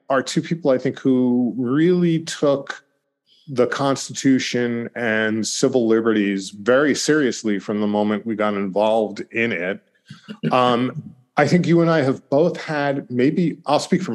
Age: 40-59